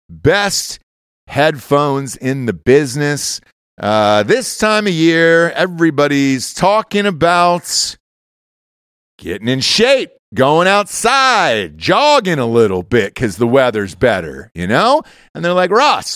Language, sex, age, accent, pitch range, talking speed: English, male, 40-59, American, 115-175 Hz, 120 wpm